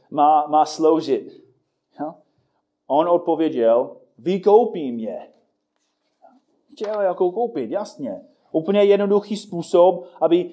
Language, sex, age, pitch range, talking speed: Czech, male, 30-49, 165-245 Hz, 90 wpm